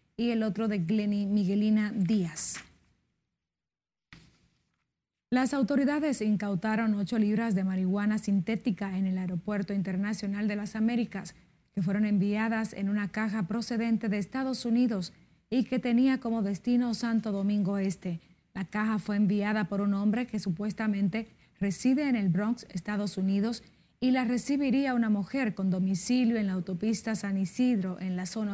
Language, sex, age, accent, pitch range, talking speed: Spanish, female, 30-49, American, 195-225 Hz, 145 wpm